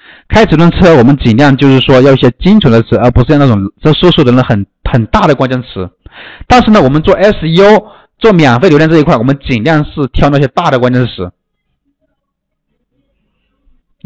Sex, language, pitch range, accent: male, Chinese, 120-170 Hz, native